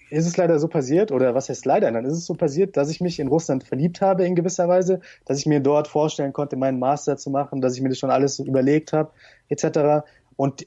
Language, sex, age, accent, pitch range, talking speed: German, male, 20-39, German, 130-160 Hz, 255 wpm